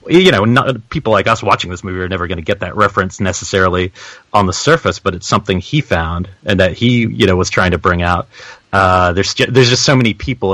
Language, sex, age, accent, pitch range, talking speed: English, male, 30-49, American, 90-110 Hz, 245 wpm